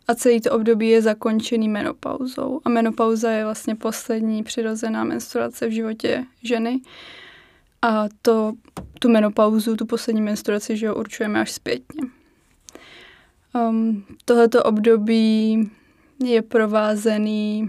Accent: native